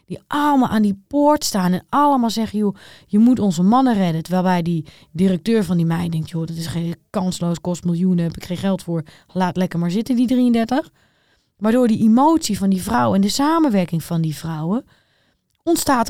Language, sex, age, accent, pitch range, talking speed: Dutch, female, 20-39, Dutch, 175-245 Hz, 200 wpm